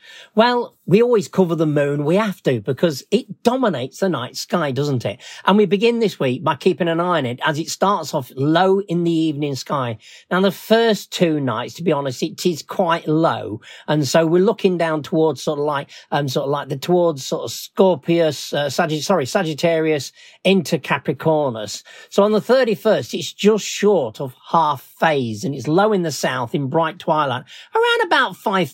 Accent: British